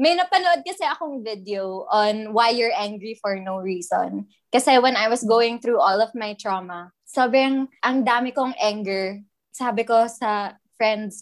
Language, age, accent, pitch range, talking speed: Filipino, 20-39, native, 195-235 Hz, 165 wpm